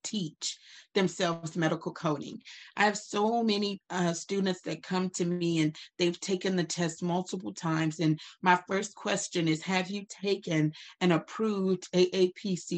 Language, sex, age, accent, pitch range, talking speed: English, female, 40-59, American, 165-195 Hz, 150 wpm